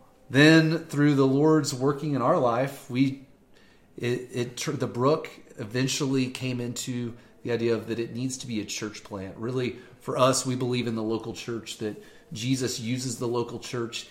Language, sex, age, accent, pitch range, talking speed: English, male, 30-49, American, 120-140 Hz, 180 wpm